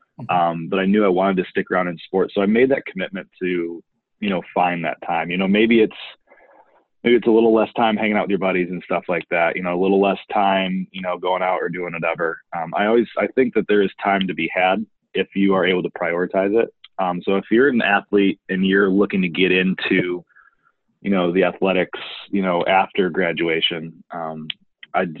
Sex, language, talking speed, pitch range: male, English, 225 wpm, 90-105 Hz